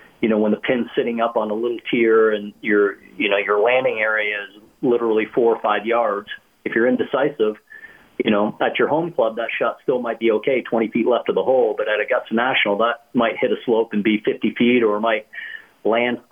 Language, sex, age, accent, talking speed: English, male, 40-59, American, 230 wpm